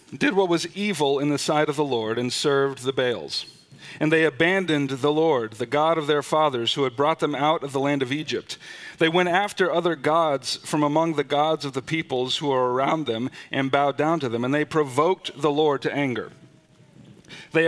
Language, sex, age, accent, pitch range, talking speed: English, male, 40-59, American, 140-170 Hz, 215 wpm